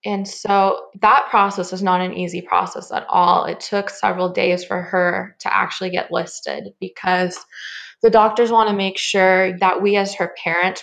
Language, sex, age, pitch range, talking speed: English, female, 20-39, 180-205 Hz, 185 wpm